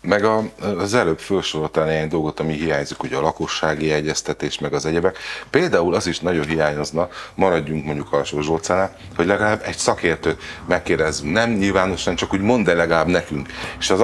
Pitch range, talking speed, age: 75-95 Hz, 155 wpm, 30-49